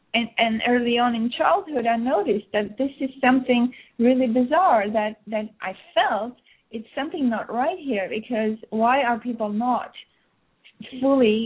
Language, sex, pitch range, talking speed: English, female, 215-255 Hz, 150 wpm